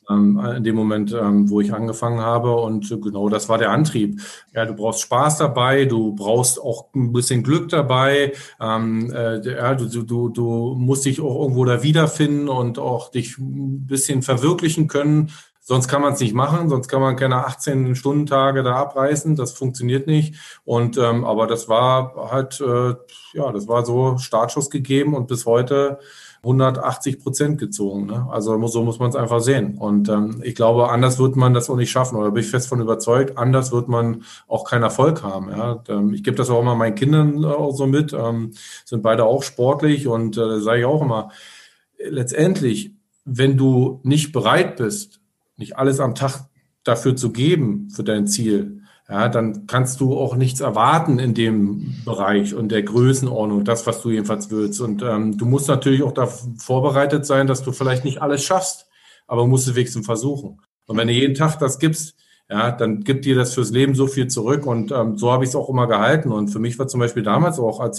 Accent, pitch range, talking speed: German, 115-135 Hz, 190 wpm